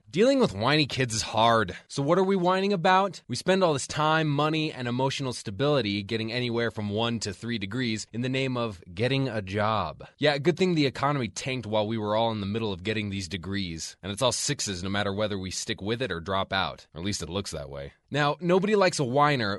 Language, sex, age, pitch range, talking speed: English, male, 20-39, 110-155 Hz, 240 wpm